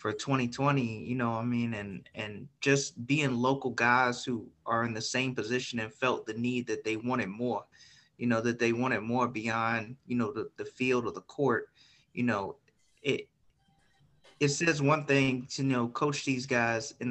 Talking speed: 195 wpm